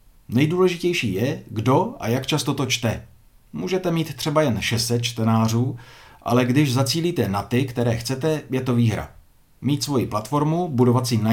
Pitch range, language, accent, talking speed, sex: 115-145 Hz, Czech, native, 160 wpm, male